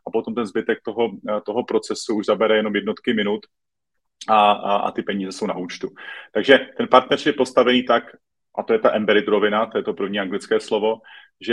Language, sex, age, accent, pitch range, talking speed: Czech, male, 30-49, native, 100-125 Hz, 205 wpm